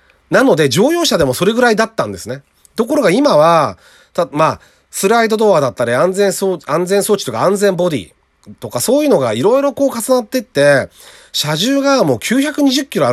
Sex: male